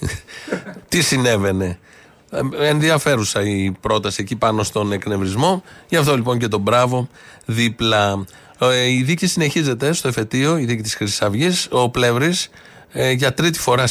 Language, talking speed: Greek, 135 wpm